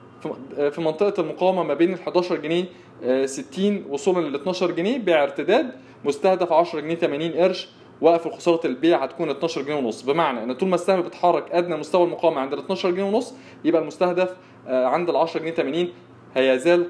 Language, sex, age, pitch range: Arabic, male, 20-39, 165-210 Hz